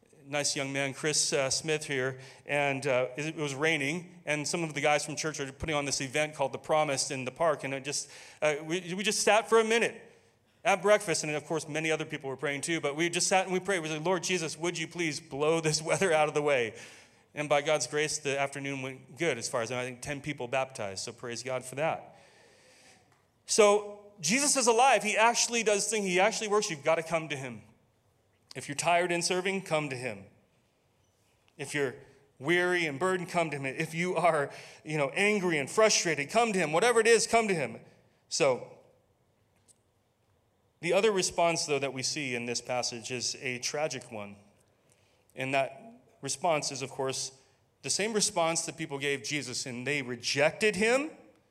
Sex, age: male, 30-49